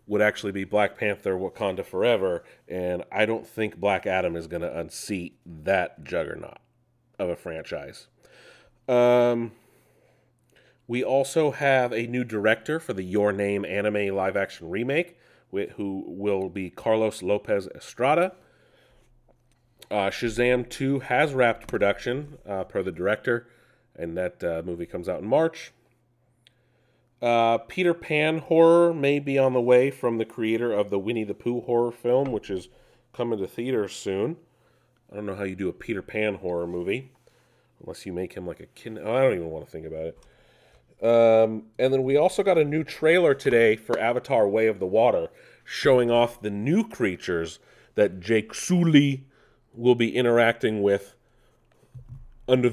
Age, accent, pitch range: 30-49, American, 105-130 Hz